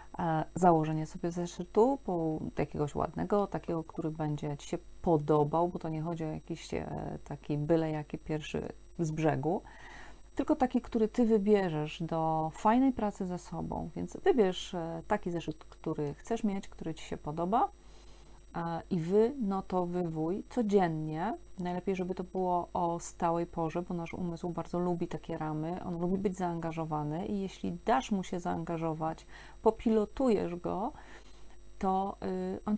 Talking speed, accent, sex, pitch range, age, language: 145 wpm, native, female, 170-205 Hz, 30-49, Polish